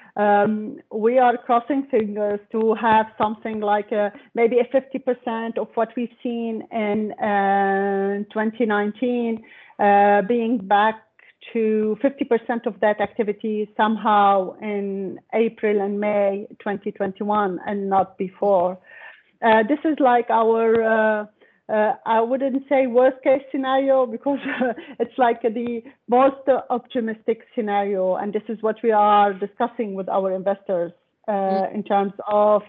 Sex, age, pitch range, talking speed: female, 40-59, 200-235 Hz, 130 wpm